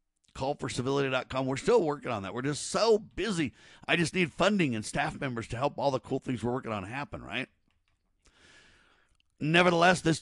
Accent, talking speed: American, 175 wpm